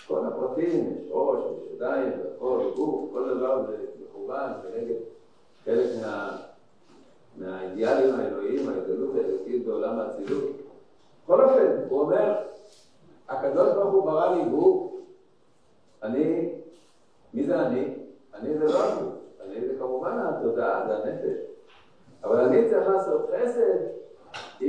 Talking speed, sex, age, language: 120 wpm, male, 60-79, Hebrew